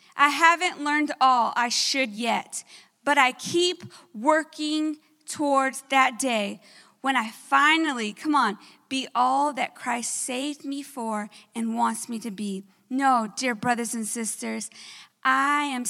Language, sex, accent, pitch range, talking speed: English, female, American, 240-310 Hz, 145 wpm